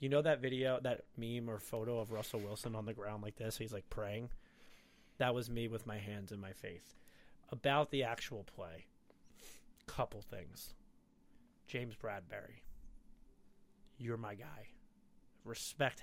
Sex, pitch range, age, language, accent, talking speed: male, 120-165 Hz, 30-49, English, American, 150 wpm